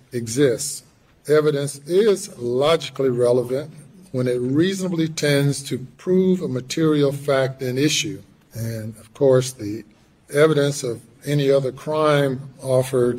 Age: 50-69